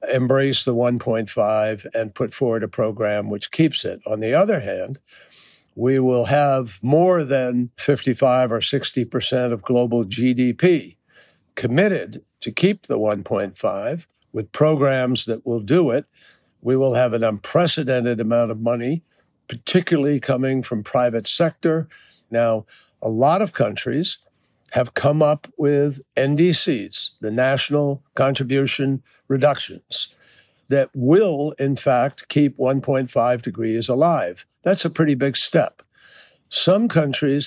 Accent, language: American, English